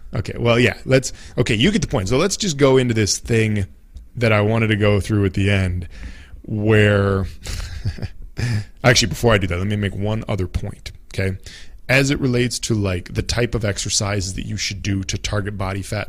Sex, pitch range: male, 95-120 Hz